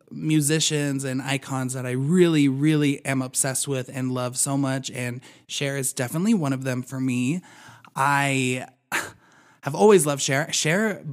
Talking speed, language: 155 wpm, English